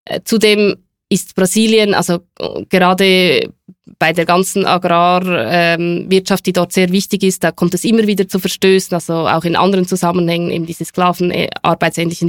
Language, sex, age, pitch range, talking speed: German, female, 20-39, 170-185 Hz, 145 wpm